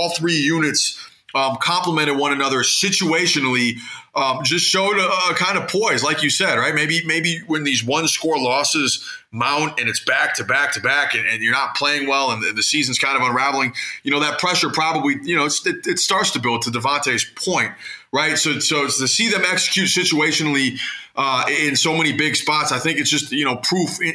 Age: 20-39